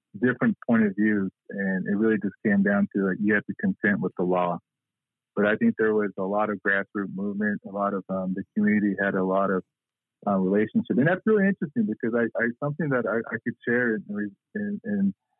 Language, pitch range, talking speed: English, 95-120 Hz, 220 wpm